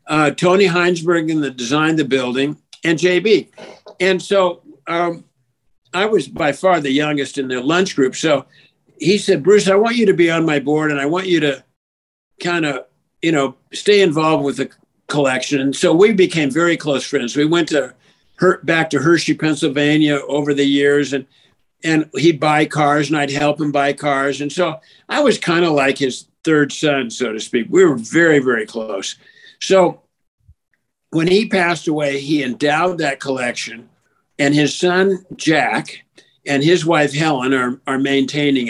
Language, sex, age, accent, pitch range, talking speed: English, male, 60-79, American, 140-170 Hz, 180 wpm